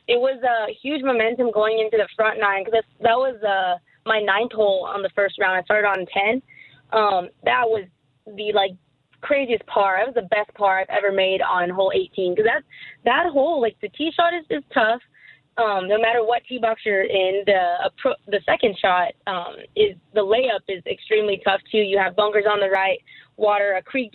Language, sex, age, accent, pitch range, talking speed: English, female, 20-39, American, 195-235 Hz, 210 wpm